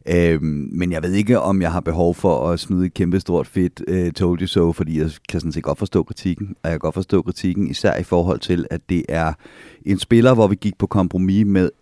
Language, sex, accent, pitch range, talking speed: Danish, male, native, 80-100 Hz, 250 wpm